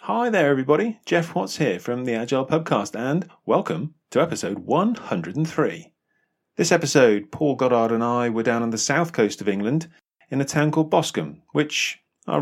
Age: 30-49